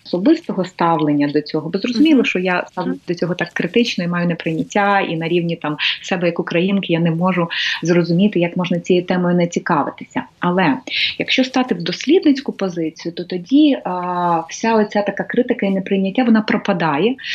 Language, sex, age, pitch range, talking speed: Ukrainian, female, 30-49, 170-220 Hz, 175 wpm